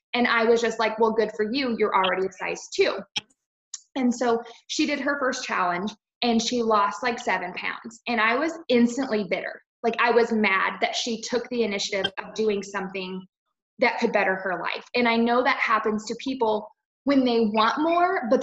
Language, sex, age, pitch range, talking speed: English, female, 20-39, 210-245 Hz, 200 wpm